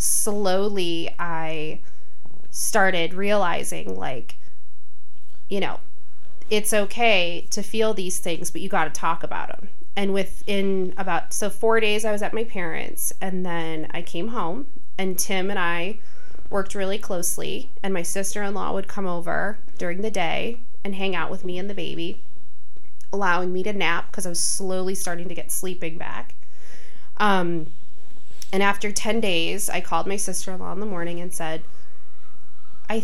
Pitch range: 175-210 Hz